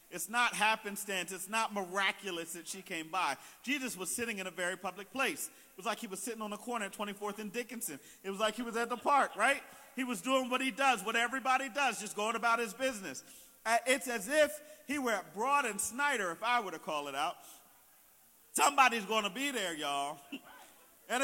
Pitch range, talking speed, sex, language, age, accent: 220-280 Hz, 220 wpm, male, English, 40-59, American